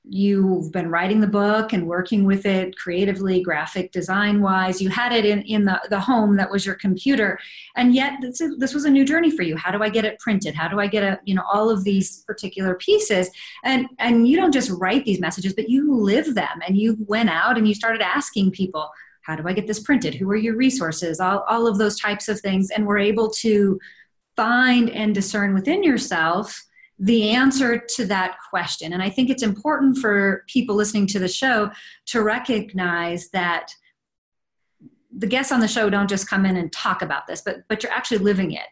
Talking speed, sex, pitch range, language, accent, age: 215 wpm, female, 190-245 Hz, English, American, 30-49